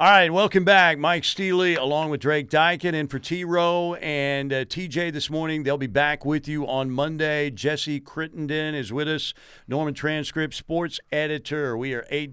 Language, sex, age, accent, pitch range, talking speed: English, male, 50-69, American, 110-150 Hz, 190 wpm